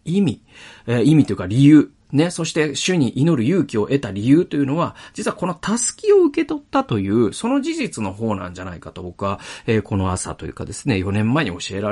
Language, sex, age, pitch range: Japanese, male, 40-59, 95-145 Hz